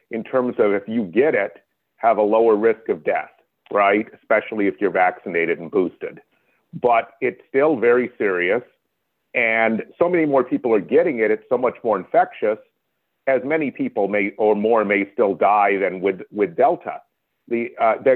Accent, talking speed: American, 175 wpm